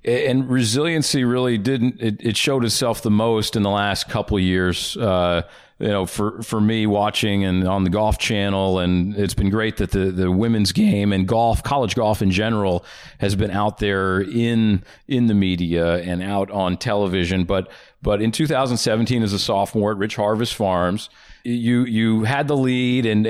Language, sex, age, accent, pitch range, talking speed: English, male, 40-59, American, 100-125 Hz, 185 wpm